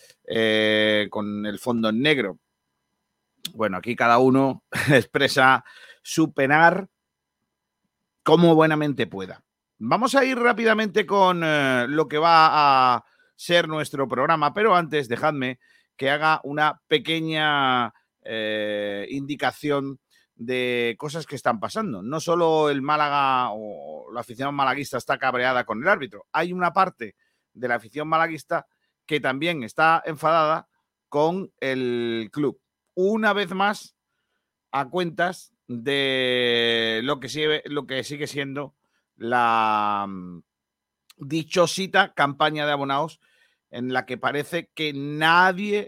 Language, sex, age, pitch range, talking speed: Spanish, male, 40-59, 120-165 Hz, 120 wpm